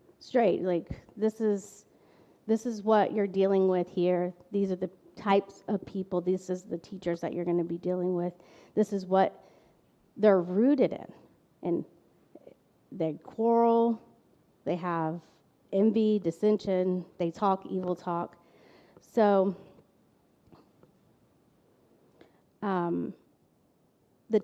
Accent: American